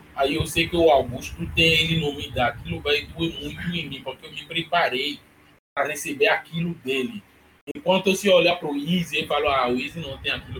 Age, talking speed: 20-39, 220 wpm